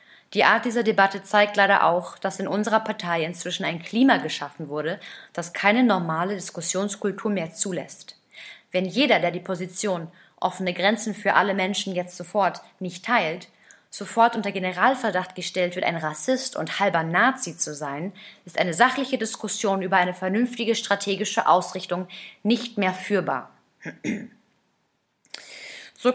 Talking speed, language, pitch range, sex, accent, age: 140 wpm, German, 180-220 Hz, female, German, 20-39